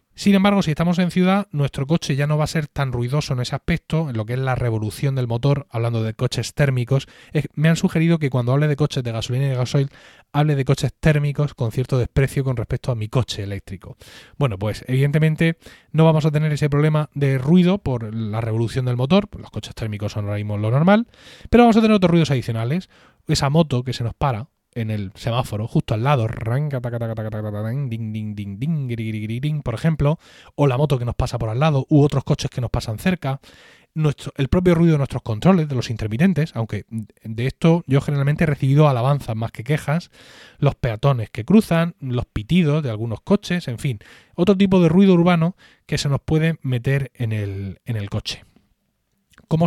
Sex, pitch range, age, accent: male, 120-160 Hz, 30-49, Spanish